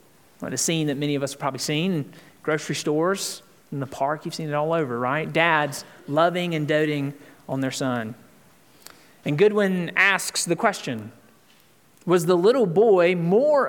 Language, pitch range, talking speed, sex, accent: English, 140-185 Hz, 165 wpm, male, American